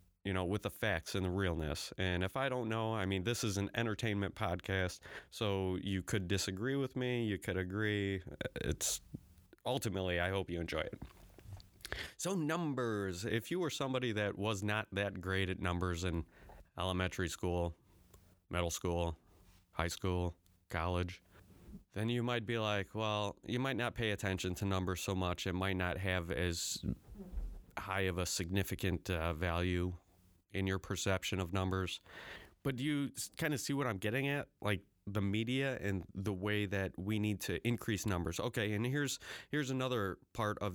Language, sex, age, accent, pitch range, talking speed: English, male, 30-49, American, 90-110 Hz, 170 wpm